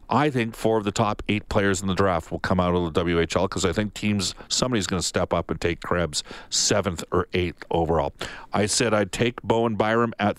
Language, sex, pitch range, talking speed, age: English, male, 95-120 Hz, 230 wpm, 50-69